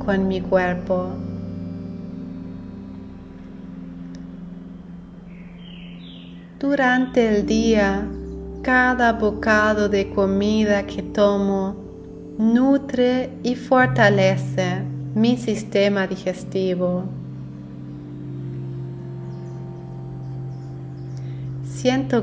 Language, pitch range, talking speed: Spanish, 130-210 Hz, 50 wpm